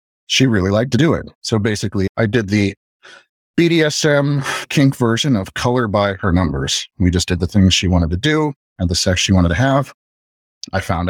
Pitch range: 85-100 Hz